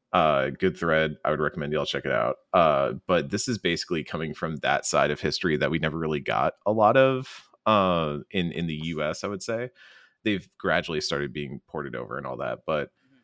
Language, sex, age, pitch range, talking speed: English, male, 30-49, 80-105 Hz, 220 wpm